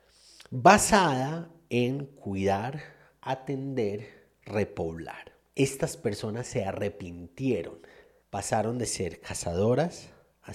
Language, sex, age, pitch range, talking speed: Spanish, male, 40-59, 120-170 Hz, 80 wpm